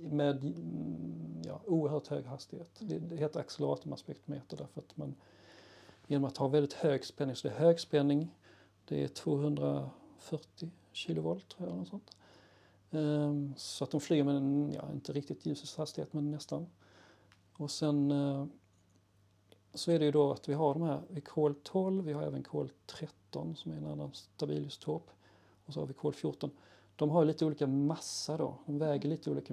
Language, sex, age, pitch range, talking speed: Swedish, male, 40-59, 100-155 Hz, 170 wpm